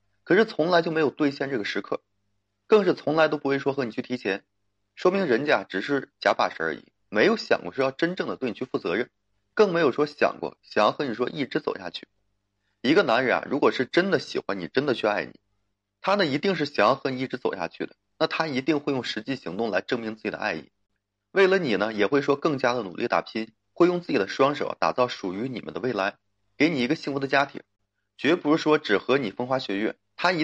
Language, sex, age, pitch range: Chinese, male, 30-49, 105-145 Hz